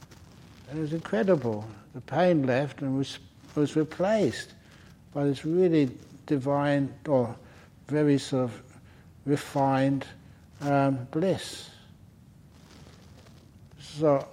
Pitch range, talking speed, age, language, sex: 115-145 Hz, 90 wpm, 60-79, English, male